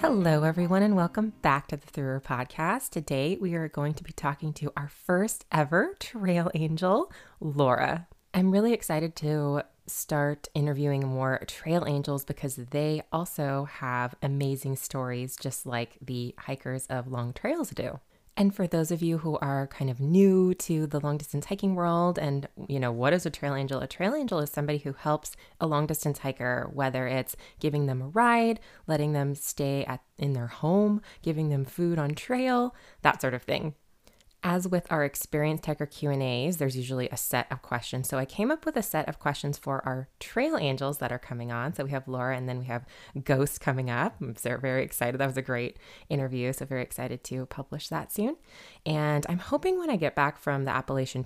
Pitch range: 130-165 Hz